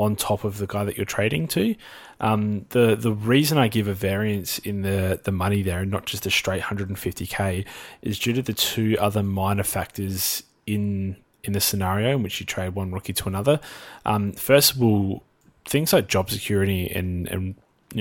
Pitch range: 95-110 Hz